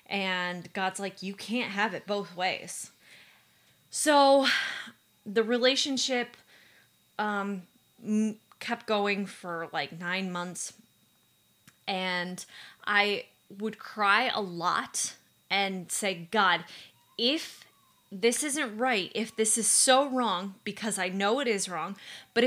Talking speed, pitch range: 120 wpm, 185-225 Hz